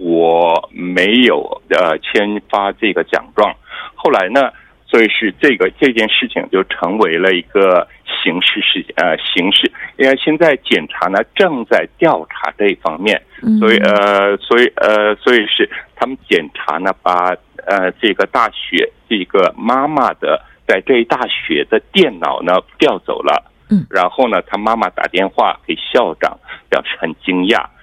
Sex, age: male, 60-79